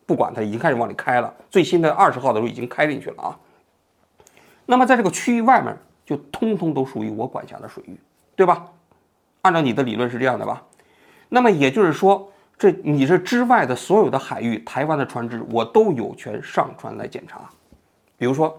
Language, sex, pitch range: Chinese, male, 120-190 Hz